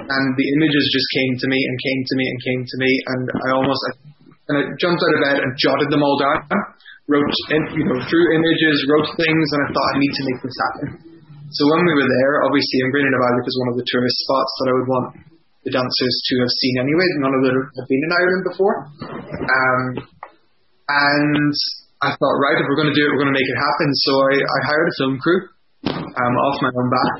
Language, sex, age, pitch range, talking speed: English, male, 20-39, 130-160 Hz, 235 wpm